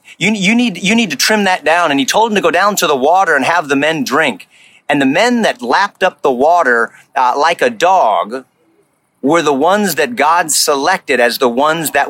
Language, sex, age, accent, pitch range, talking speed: English, male, 40-59, American, 155-220 Hz, 230 wpm